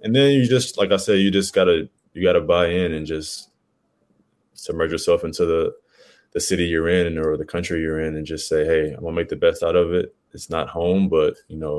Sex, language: male, English